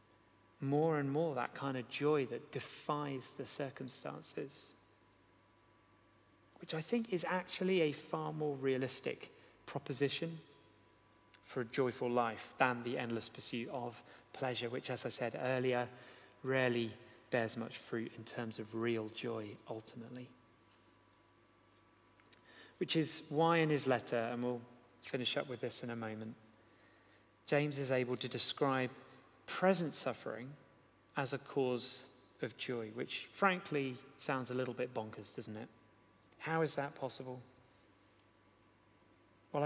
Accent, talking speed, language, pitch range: British, 130 wpm, English, 110-145 Hz